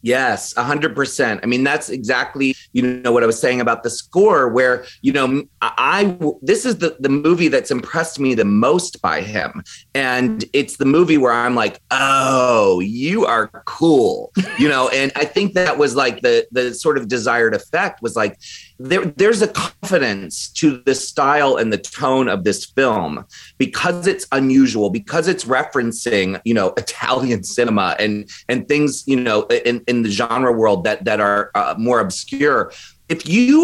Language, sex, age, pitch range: English, male, 30-49, 120-165 Hz